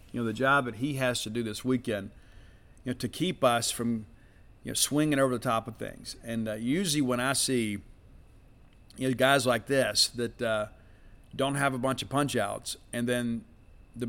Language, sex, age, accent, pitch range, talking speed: English, male, 50-69, American, 115-135 Hz, 205 wpm